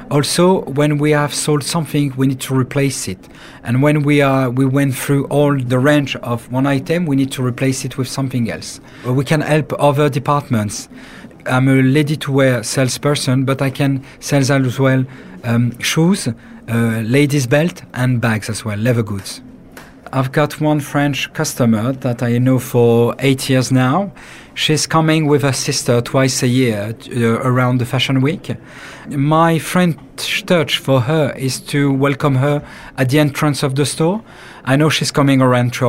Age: 40-59